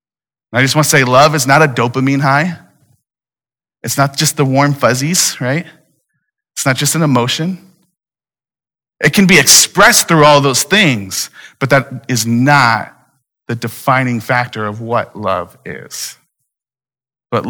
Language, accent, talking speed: English, American, 145 wpm